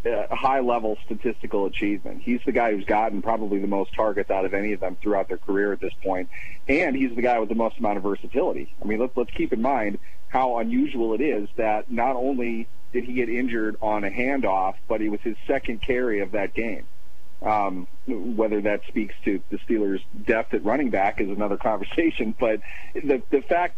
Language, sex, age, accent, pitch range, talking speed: English, male, 40-59, American, 100-125 Hz, 205 wpm